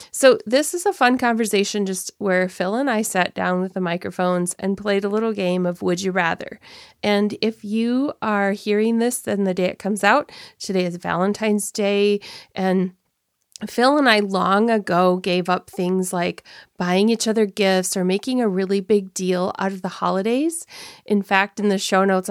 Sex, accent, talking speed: female, American, 190 wpm